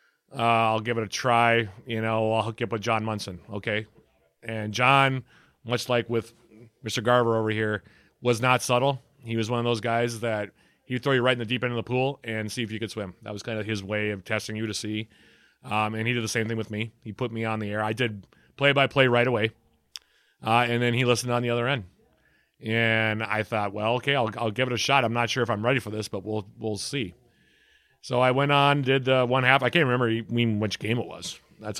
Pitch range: 110-125 Hz